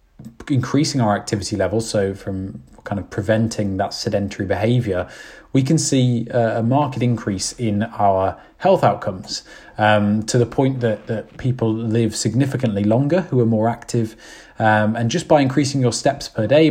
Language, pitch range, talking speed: English, 105-130 Hz, 165 wpm